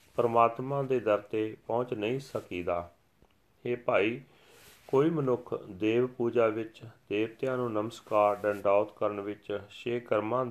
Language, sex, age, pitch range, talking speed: Punjabi, male, 40-59, 105-130 Hz, 120 wpm